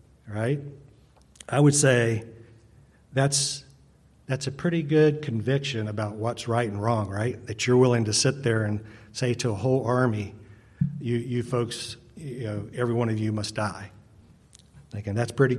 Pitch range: 110-130 Hz